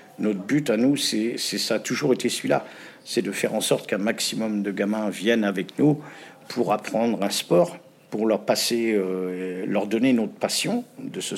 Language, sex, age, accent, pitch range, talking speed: French, male, 50-69, French, 95-115 Hz, 190 wpm